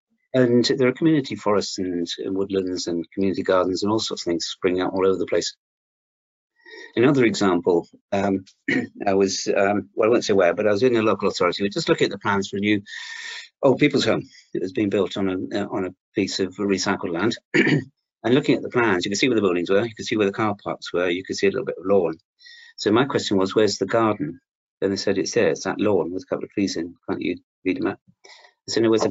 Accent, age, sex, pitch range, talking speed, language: British, 40-59, male, 95-150 Hz, 255 wpm, English